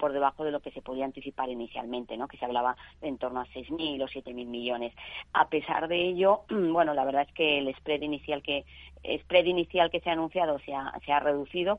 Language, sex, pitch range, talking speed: Spanish, female, 140-165 Hz, 230 wpm